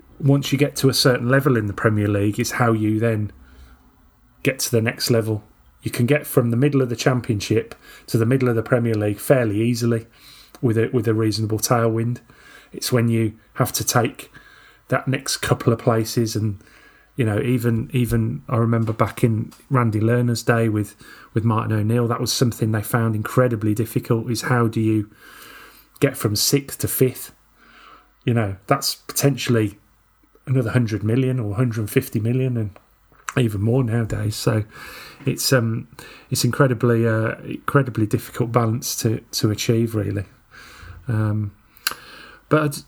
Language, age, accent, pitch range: English, 30-49, British, 110-130 Hz